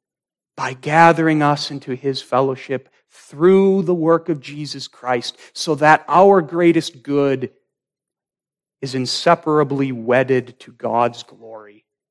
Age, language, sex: 40-59, English, male